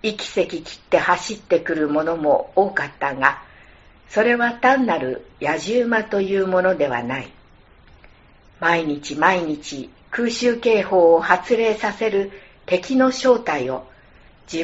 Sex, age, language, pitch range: female, 60-79, Japanese, 150-225 Hz